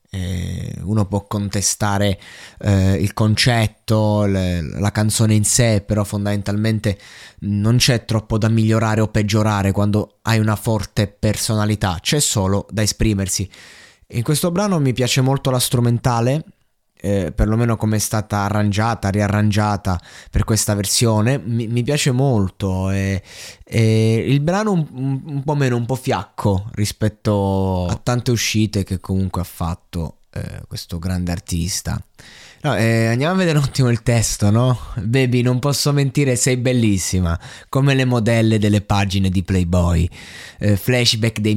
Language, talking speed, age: Italian, 145 wpm, 20-39